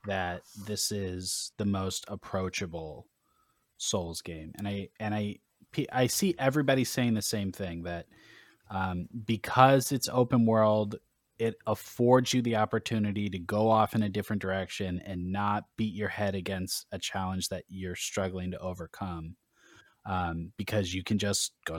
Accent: American